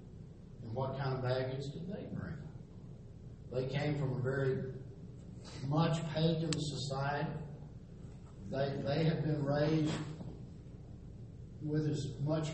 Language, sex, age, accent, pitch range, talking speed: English, male, 60-79, American, 135-170 Hz, 110 wpm